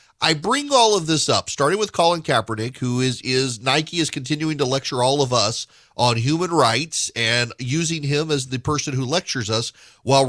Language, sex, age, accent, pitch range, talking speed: English, male, 40-59, American, 105-150 Hz, 200 wpm